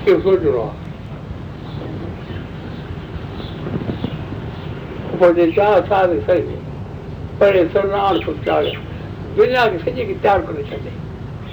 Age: 60-79